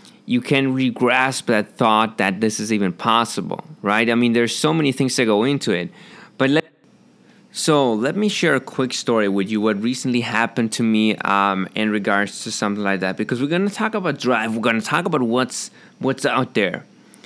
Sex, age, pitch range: male, 20-39, 105-130 Hz